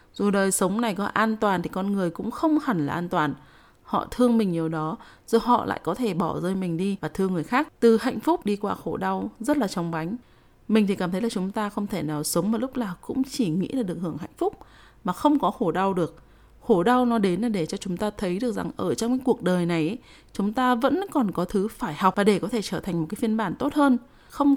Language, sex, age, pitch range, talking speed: Vietnamese, female, 20-39, 180-250 Hz, 275 wpm